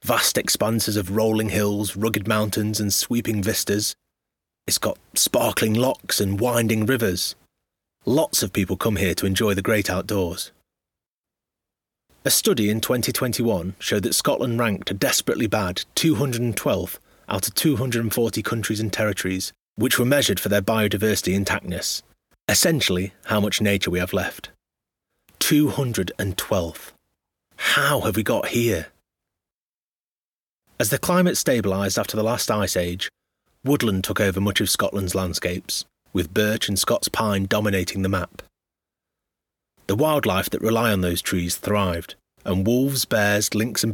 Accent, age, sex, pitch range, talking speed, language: British, 30-49, male, 95-120 Hz, 140 wpm, English